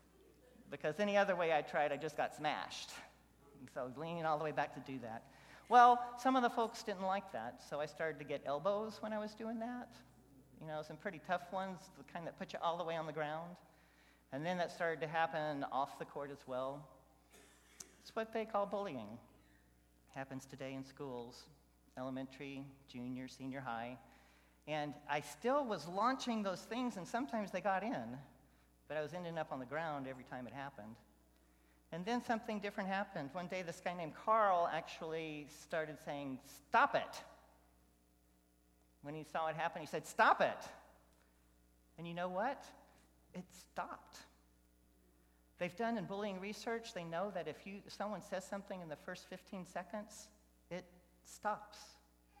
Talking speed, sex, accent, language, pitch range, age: 180 wpm, male, American, English, 130-195 Hz, 40-59